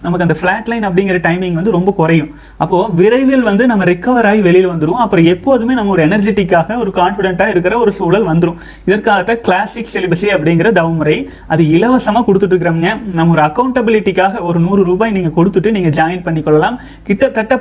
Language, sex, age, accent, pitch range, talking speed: Tamil, male, 30-49, native, 170-215 Hz, 165 wpm